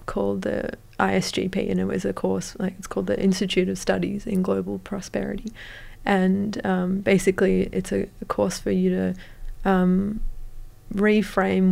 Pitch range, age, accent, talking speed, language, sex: 175-195 Hz, 20-39, Australian, 155 wpm, English, female